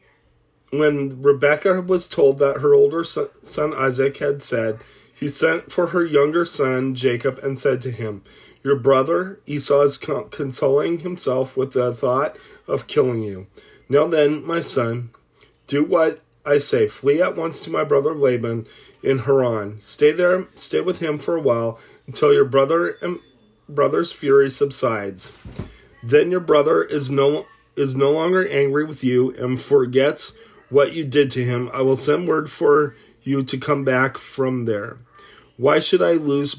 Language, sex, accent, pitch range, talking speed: English, male, American, 125-150 Hz, 165 wpm